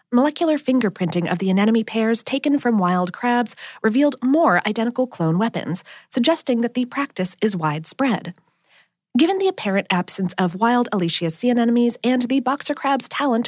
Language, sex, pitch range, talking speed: English, female, 185-280 Hz, 155 wpm